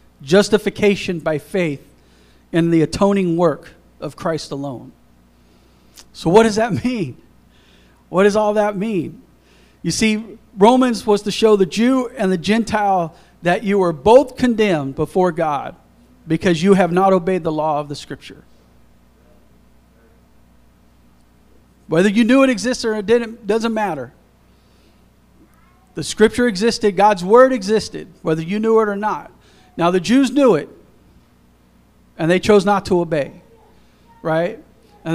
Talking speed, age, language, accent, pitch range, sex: 140 wpm, 40-59, English, American, 145-220 Hz, male